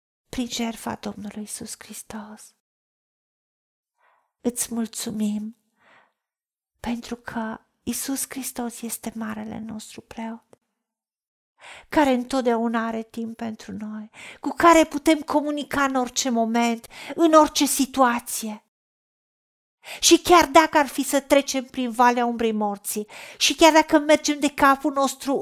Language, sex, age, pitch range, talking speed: Romanian, female, 50-69, 225-265 Hz, 115 wpm